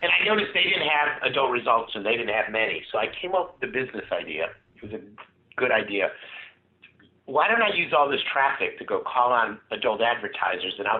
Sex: male